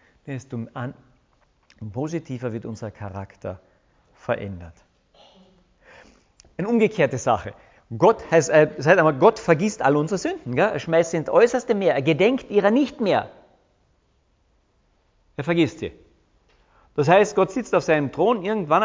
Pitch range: 125-200 Hz